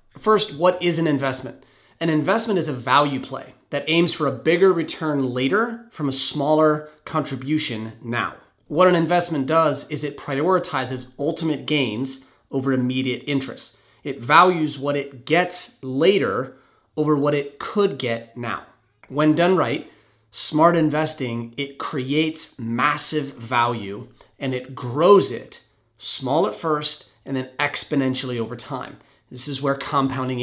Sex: male